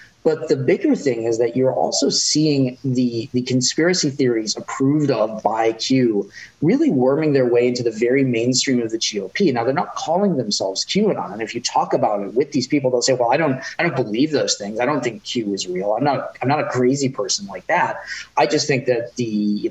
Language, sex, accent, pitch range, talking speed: English, male, American, 125-155 Hz, 225 wpm